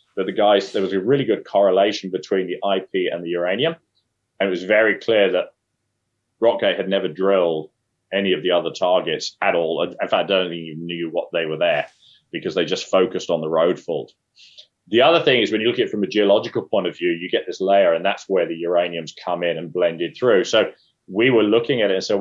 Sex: male